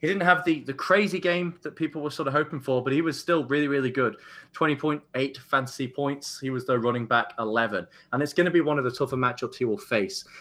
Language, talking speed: English, 250 wpm